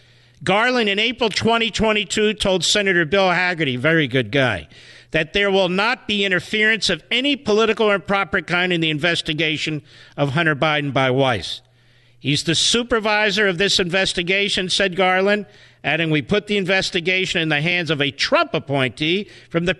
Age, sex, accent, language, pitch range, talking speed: 50-69, male, American, English, 145-205 Hz, 160 wpm